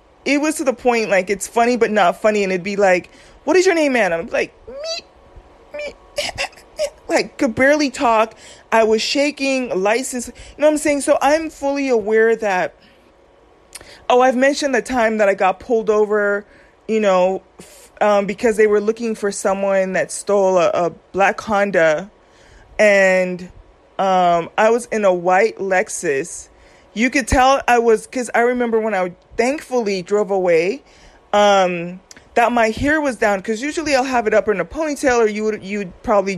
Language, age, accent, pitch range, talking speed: English, 30-49, American, 195-255 Hz, 180 wpm